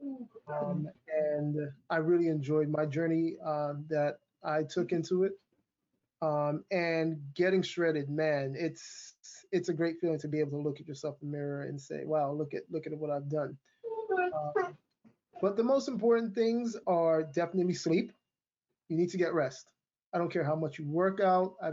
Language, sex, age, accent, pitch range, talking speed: English, male, 20-39, American, 155-185 Hz, 180 wpm